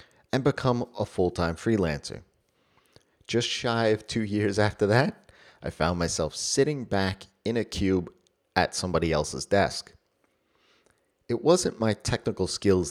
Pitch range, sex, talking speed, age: 85-115 Hz, male, 135 wpm, 30-49